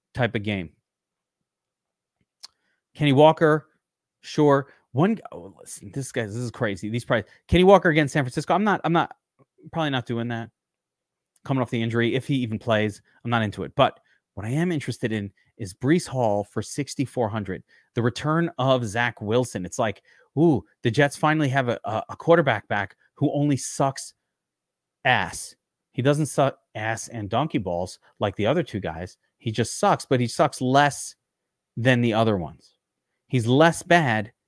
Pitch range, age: 115-150 Hz, 30-49